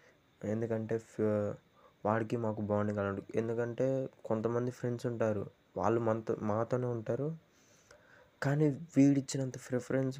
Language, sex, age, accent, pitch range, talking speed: Telugu, male, 20-39, native, 105-120 Hz, 90 wpm